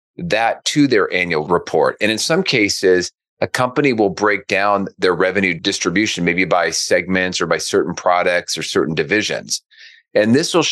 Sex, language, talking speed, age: male, English, 170 wpm, 40-59